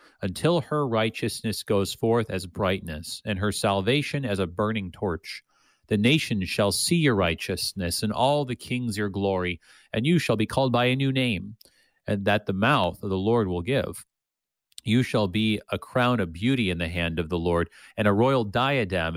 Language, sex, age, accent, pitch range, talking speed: English, male, 40-59, American, 95-120 Hz, 190 wpm